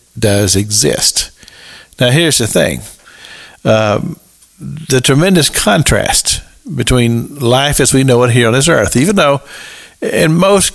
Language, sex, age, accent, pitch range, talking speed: English, male, 60-79, American, 115-140 Hz, 135 wpm